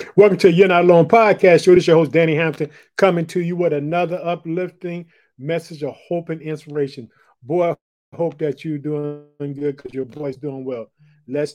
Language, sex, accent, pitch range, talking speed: English, male, American, 135-160 Hz, 180 wpm